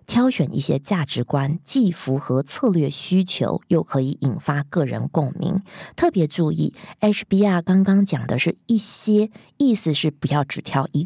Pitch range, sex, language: 145-200 Hz, female, Chinese